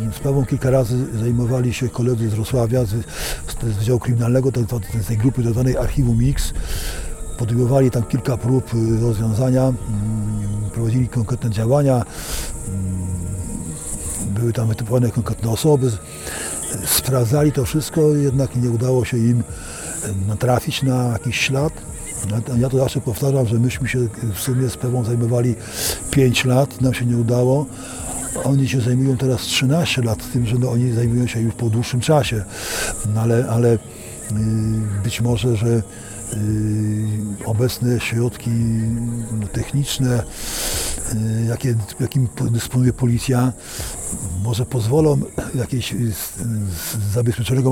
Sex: male